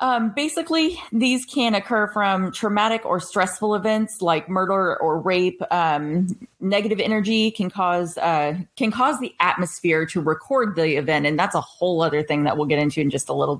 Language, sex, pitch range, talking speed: English, female, 160-205 Hz, 185 wpm